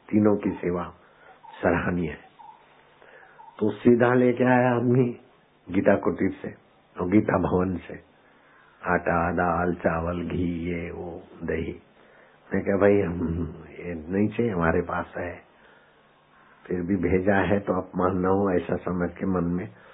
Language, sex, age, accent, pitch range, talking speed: Hindi, male, 60-79, native, 95-125 Hz, 145 wpm